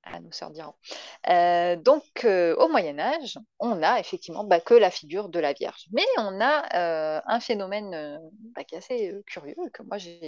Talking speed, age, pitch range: 200 wpm, 30-49, 170-240 Hz